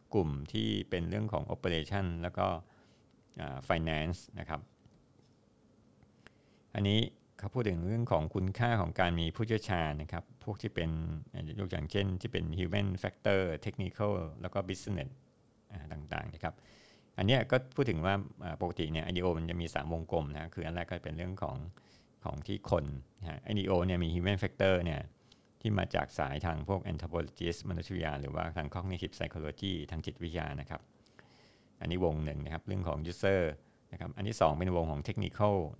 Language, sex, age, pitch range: Thai, male, 60-79, 80-100 Hz